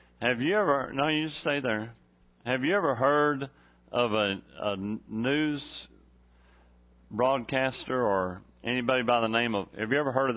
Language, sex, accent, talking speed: English, male, American, 155 wpm